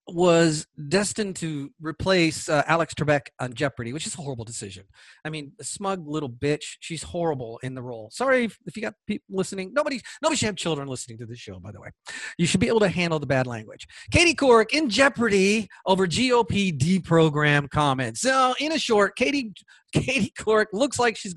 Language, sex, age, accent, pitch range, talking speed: English, male, 40-59, American, 140-215 Hz, 200 wpm